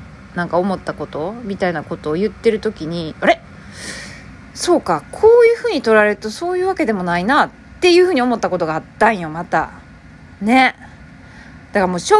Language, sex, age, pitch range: Japanese, female, 20-39, 175-260 Hz